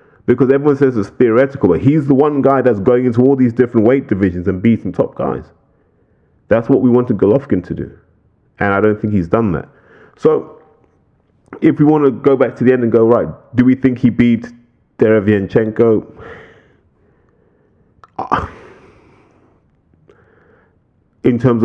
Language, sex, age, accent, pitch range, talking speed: English, male, 30-49, British, 100-120 Hz, 160 wpm